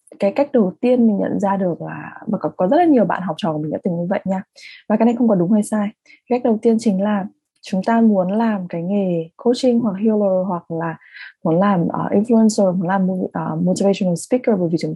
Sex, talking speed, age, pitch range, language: female, 245 wpm, 20-39, 170-225 Hz, English